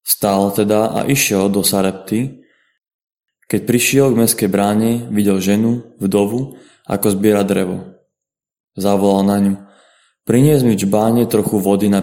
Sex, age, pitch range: male, 20-39, 100-115 Hz